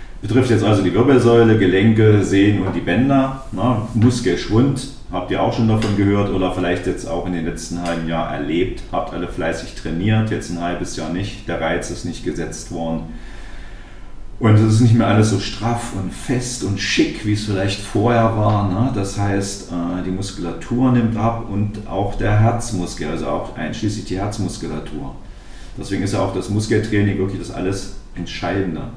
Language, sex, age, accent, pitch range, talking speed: German, male, 40-59, German, 90-110 Hz, 180 wpm